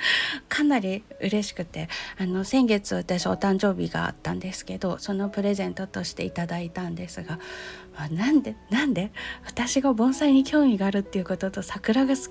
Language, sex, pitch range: Japanese, female, 185-255 Hz